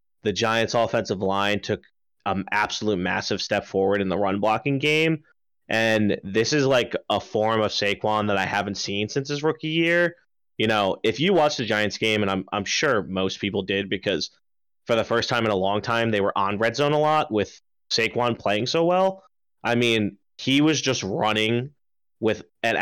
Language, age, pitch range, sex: English, 20-39, 100-120 Hz, male